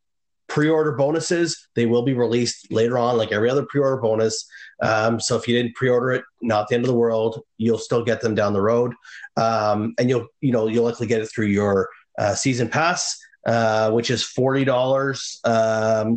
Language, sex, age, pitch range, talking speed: English, male, 30-49, 115-150 Hz, 195 wpm